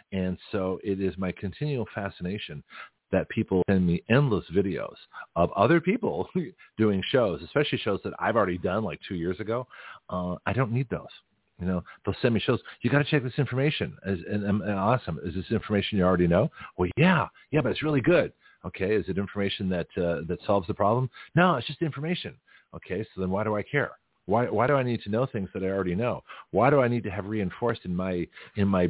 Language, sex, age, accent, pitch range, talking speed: English, male, 40-59, American, 95-120 Hz, 220 wpm